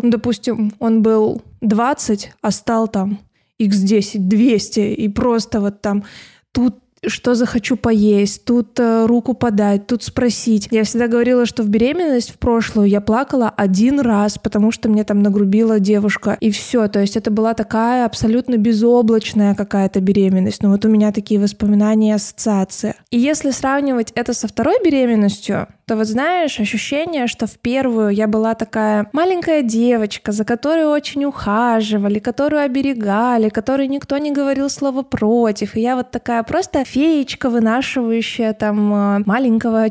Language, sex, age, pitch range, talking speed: Russian, female, 20-39, 210-255 Hz, 150 wpm